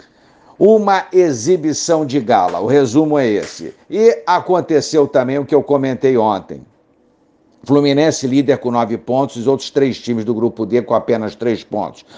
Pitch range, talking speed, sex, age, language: 120-145 Hz, 160 wpm, male, 60-79, Portuguese